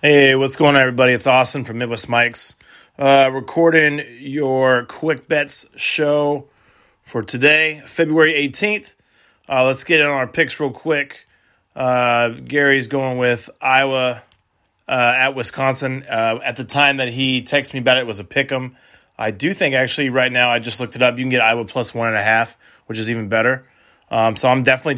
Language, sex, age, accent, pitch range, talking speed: English, male, 30-49, American, 120-140 Hz, 190 wpm